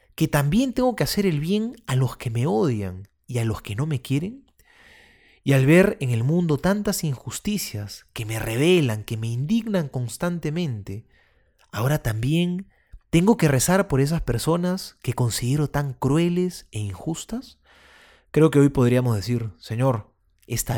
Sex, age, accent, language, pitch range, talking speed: male, 30-49, Argentinian, Spanish, 115-180 Hz, 160 wpm